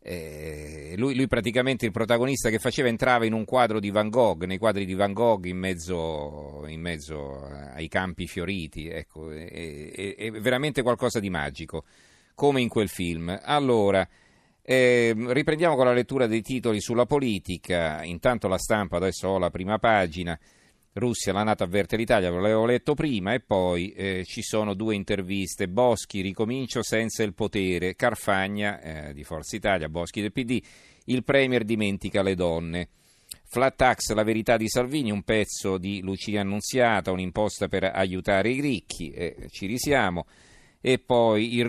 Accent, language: native, Italian